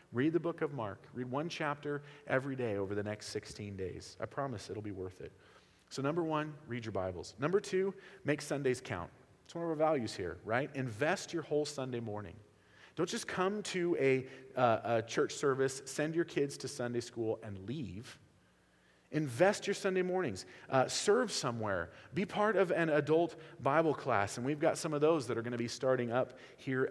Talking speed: 195 wpm